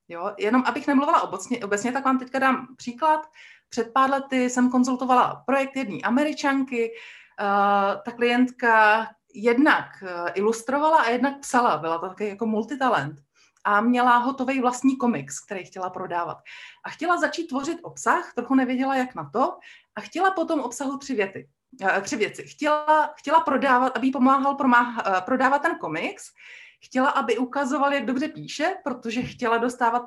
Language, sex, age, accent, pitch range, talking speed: Czech, female, 30-49, native, 215-285 Hz, 155 wpm